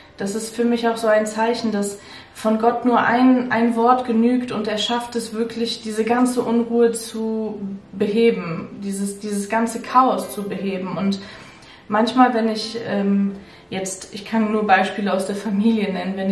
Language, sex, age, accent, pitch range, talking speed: German, female, 20-39, German, 205-235 Hz, 175 wpm